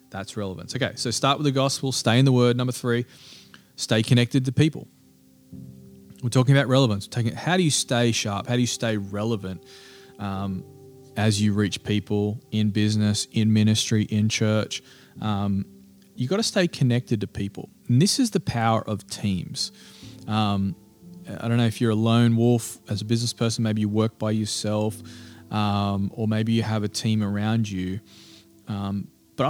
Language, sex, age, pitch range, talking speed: English, male, 20-39, 100-125 Hz, 180 wpm